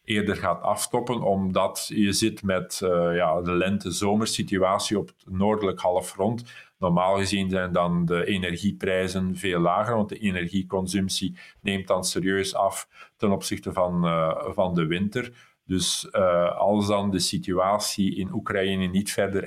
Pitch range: 95-105 Hz